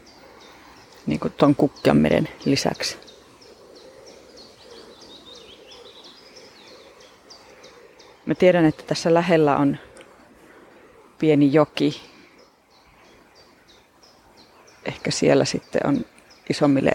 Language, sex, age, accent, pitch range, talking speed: Finnish, female, 30-49, native, 140-195 Hz, 60 wpm